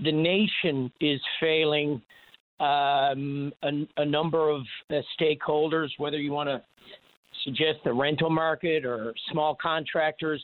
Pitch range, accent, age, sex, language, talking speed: 145-160 Hz, American, 50-69, male, English, 125 wpm